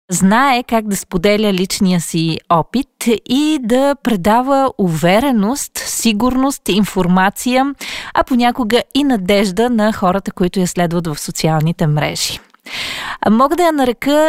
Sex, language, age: female, Bulgarian, 30-49